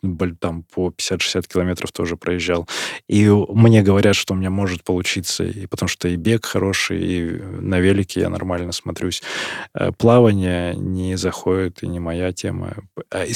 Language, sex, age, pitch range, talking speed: Russian, male, 20-39, 90-120 Hz, 155 wpm